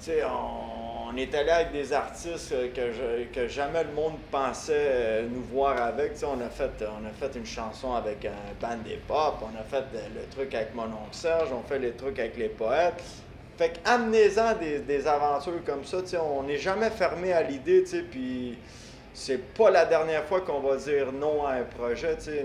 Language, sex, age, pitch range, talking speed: English, male, 30-49, 130-205 Hz, 190 wpm